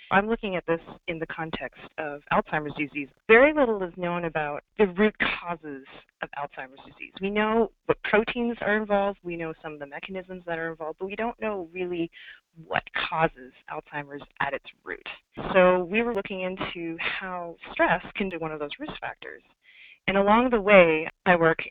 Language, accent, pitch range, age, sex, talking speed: English, American, 150-195 Hz, 30-49, female, 185 wpm